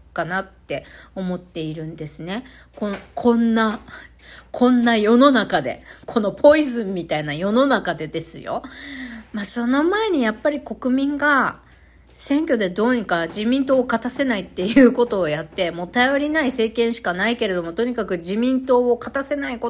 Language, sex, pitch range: Japanese, female, 170-240 Hz